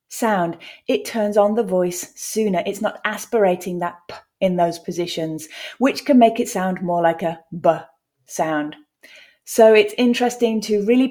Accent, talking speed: British, 160 wpm